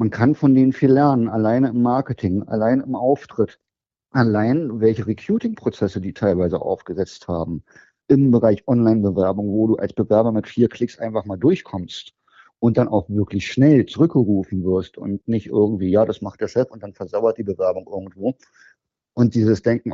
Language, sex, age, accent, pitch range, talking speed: German, male, 50-69, German, 100-130 Hz, 170 wpm